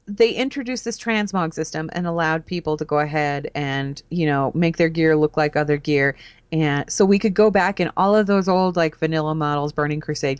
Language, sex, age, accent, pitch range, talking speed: English, female, 30-49, American, 155-200 Hz, 215 wpm